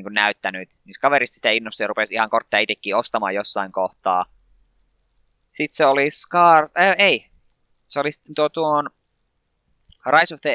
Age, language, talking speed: 20-39, Finnish, 160 wpm